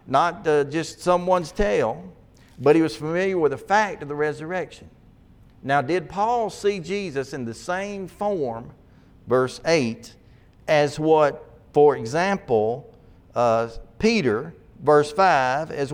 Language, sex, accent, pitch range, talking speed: English, male, American, 115-160 Hz, 130 wpm